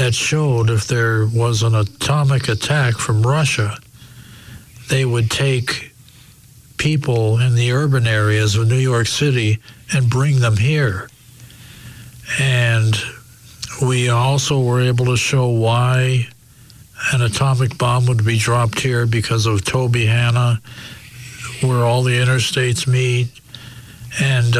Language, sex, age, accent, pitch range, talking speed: English, male, 60-79, American, 115-130 Hz, 125 wpm